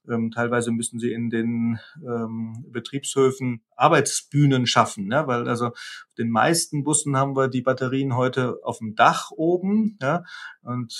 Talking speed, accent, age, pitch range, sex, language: 140 wpm, German, 30-49, 120-140 Hz, male, German